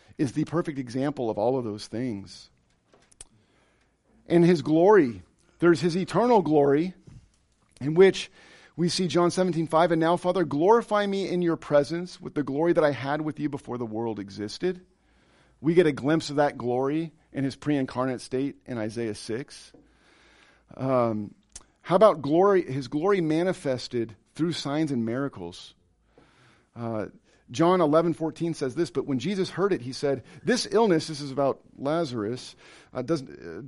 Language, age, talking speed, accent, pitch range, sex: English, 40-59, 160 wpm, American, 120-170 Hz, male